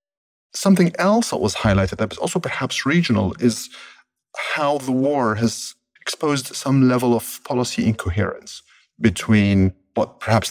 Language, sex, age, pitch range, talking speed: English, male, 40-59, 100-125 Hz, 135 wpm